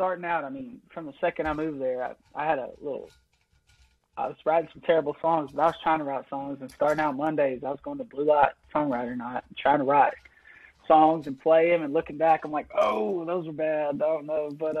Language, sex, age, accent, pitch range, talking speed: English, male, 20-39, American, 140-170 Hz, 240 wpm